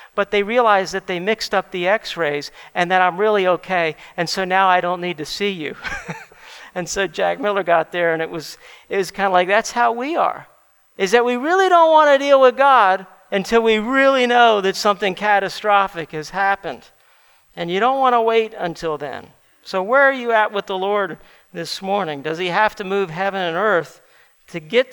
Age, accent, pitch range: 50-69, American, 180-225 Hz